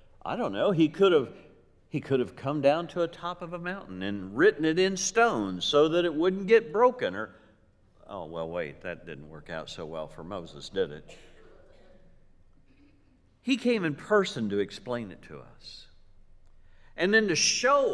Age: 60-79